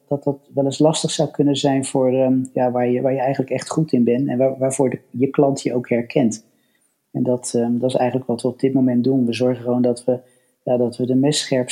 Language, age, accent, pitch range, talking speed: Dutch, 40-59, Dutch, 120-135 Hz, 260 wpm